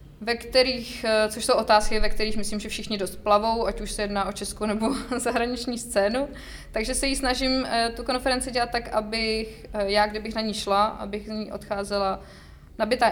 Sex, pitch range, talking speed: female, 190-215 Hz, 185 wpm